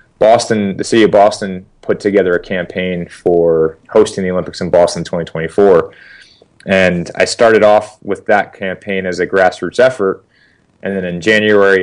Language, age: English, 30-49